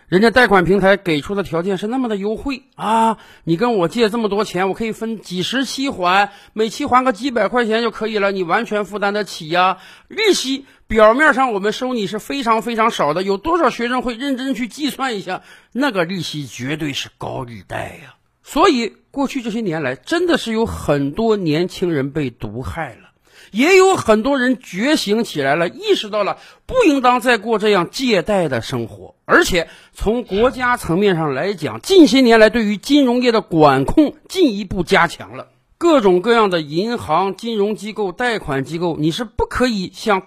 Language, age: Chinese, 50-69